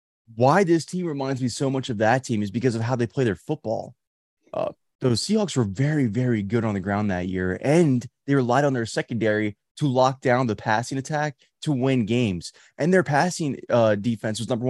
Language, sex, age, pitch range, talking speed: English, male, 20-39, 115-170 Hz, 210 wpm